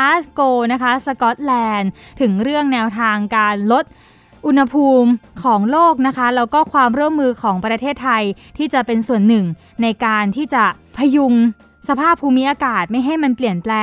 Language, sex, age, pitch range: Thai, female, 20-39, 215-275 Hz